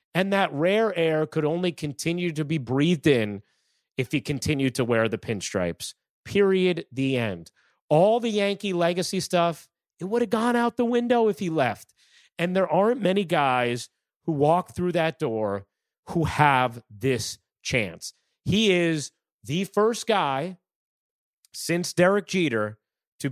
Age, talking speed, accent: 30-49, 150 wpm, American